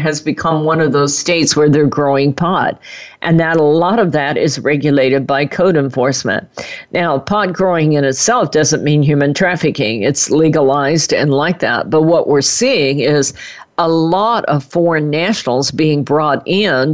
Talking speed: 170 wpm